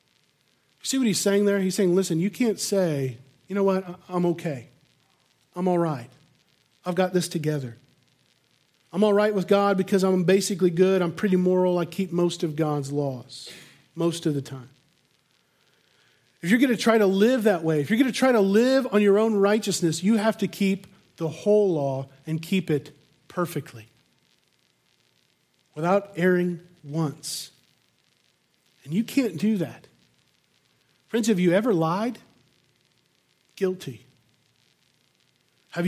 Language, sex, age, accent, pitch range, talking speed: English, male, 40-59, American, 140-200 Hz, 150 wpm